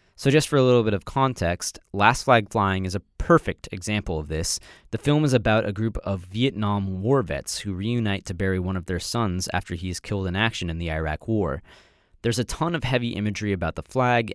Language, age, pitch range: English, 20-39, 90-120 Hz